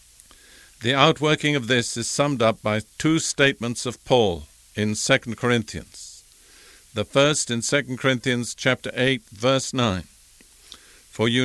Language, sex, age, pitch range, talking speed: English, male, 50-69, 110-140 Hz, 135 wpm